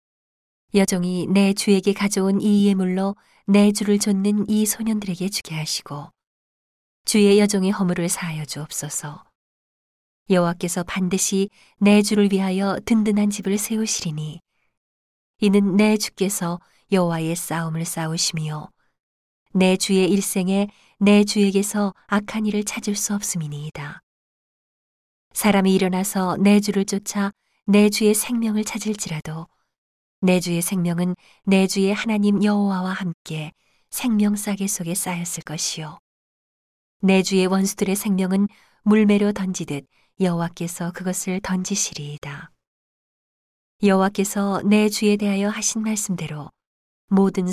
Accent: native